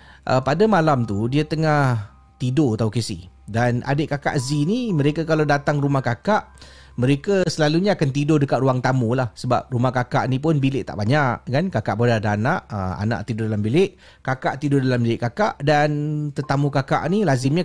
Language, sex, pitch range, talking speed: Malay, male, 115-155 Hz, 185 wpm